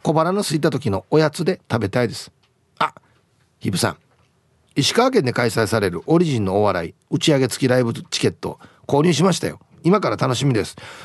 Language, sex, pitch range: Japanese, male, 110-170 Hz